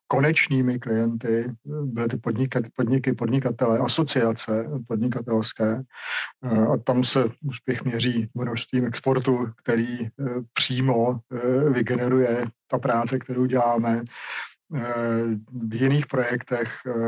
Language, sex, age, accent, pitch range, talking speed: Czech, male, 40-59, native, 115-125 Hz, 90 wpm